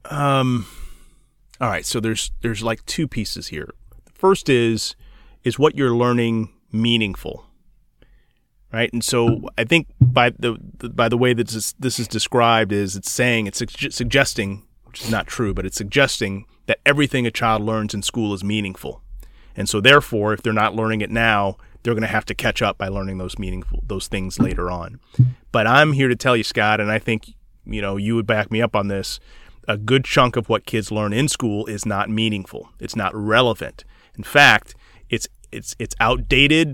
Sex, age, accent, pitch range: male, 30-49, American, 105-125 Hz